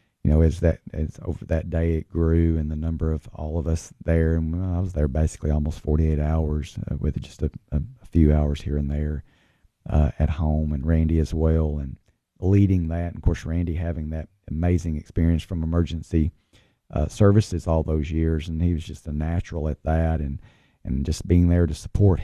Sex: male